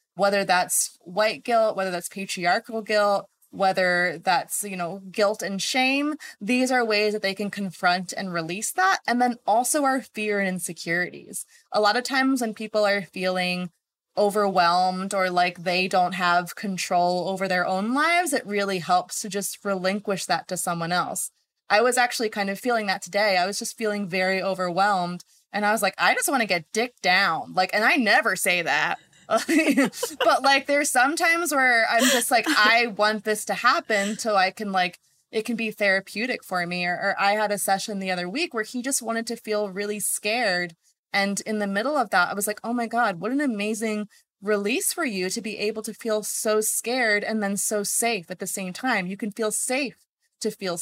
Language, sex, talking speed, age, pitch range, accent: English, female, 205 wpm, 20-39, 185-230 Hz, American